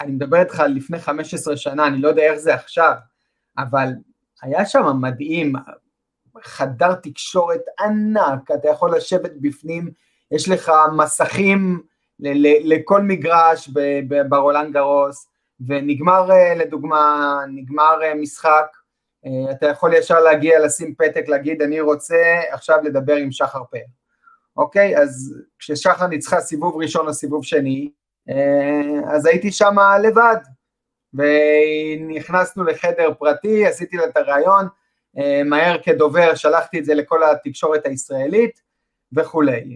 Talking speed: 125 wpm